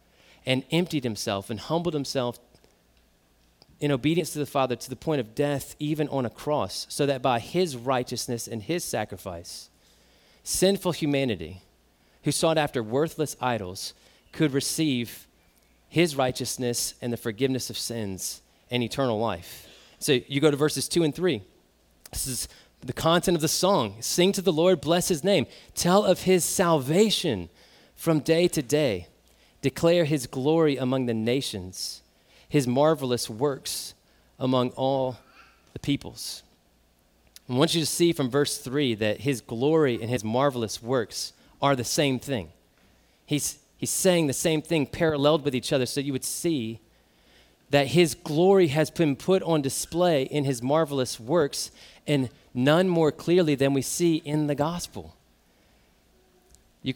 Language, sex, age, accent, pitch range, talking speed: English, male, 30-49, American, 115-155 Hz, 155 wpm